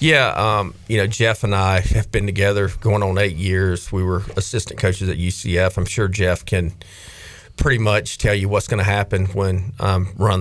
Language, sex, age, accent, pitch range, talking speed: English, male, 40-59, American, 90-100 Hz, 210 wpm